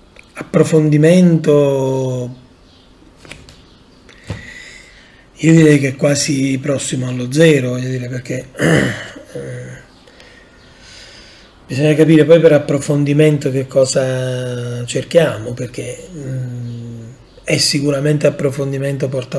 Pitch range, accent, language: 125-155 Hz, native, Italian